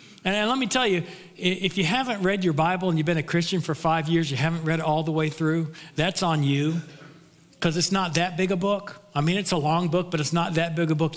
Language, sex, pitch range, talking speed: English, male, 140-170 Hz, 270 wpm